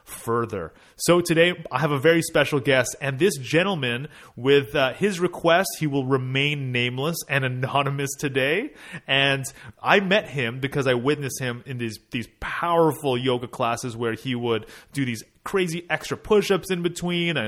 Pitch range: 125-165 Hz